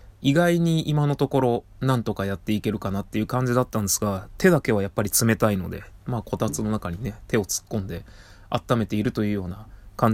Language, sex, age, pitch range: Japanese, male, 20-39, 100-135 Hz